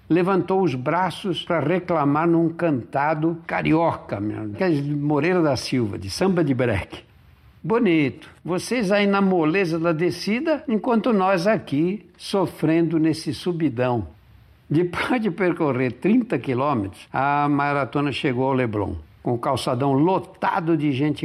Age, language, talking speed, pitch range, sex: 60-79, Portuguese, 130 wpm, 140-180 Hz, male